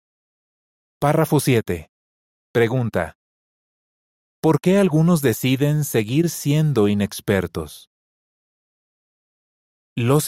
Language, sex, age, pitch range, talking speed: Spanish, male, 40-59, 105-155 Hz, 65 wpm